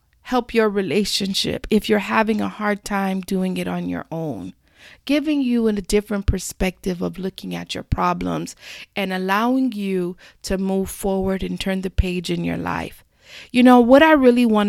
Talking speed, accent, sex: 175 wpm, American, female